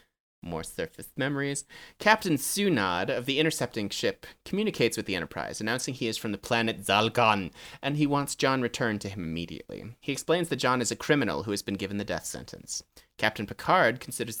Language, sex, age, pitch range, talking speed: English, male, 30-49, 100-140 Hz, 185 wpm